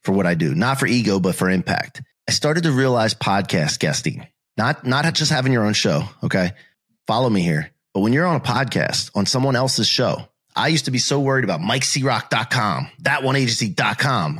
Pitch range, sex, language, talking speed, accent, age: 115-145 Hz, male, English, 190 wpm, American, 30-49